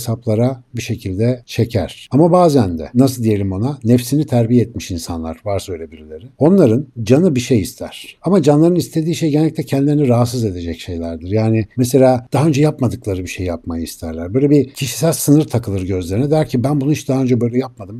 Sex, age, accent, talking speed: male, 60-79, native, 185 wpm